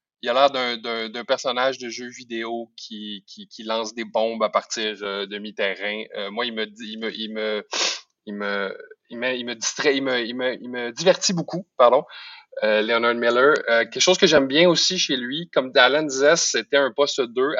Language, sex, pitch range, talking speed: French, male, 115-165 Hz, 155 wpm